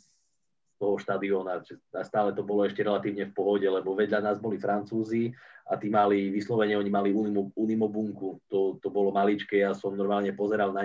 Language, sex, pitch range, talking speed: Czech, male, 100-105 Hz, 175 wpm